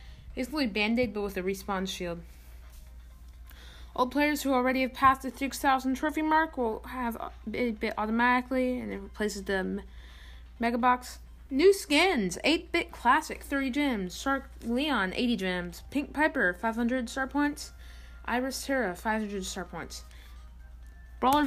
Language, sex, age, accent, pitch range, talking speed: English, female, 20-39, American, 190-265 Hz, 140 wpm